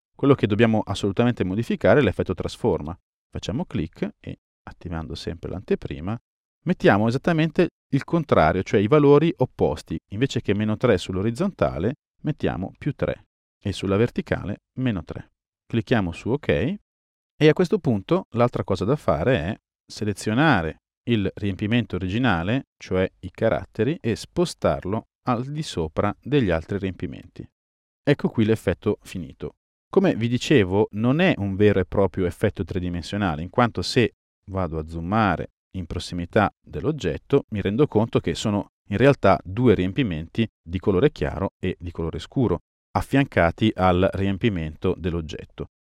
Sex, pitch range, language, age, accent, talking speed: male, 90-125 Hz, Italian, 40-59, native, 140 wpm